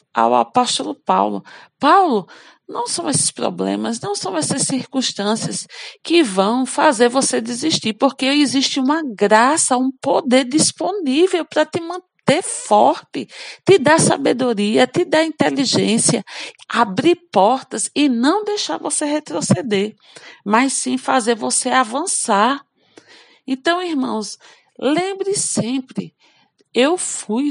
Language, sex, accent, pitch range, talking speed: Portuguese, female, Brazilian, 220-305 Hz, 115 wpm